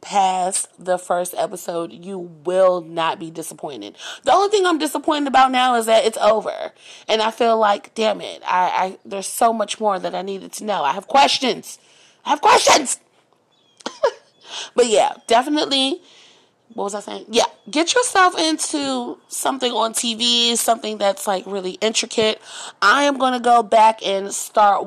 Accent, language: American, English